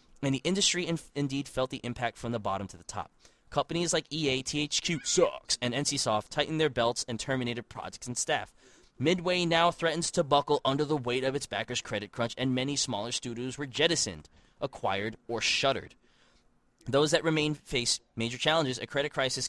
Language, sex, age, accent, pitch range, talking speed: English, male, 20-39, American, 115-150 Hz, 180 wpm